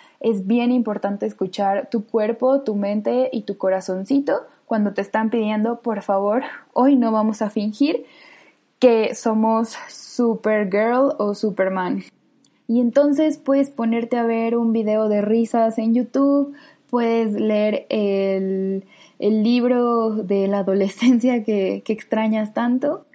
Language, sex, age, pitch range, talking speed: Spanish, female, 10-29, 205-240 Hz, 130 wpm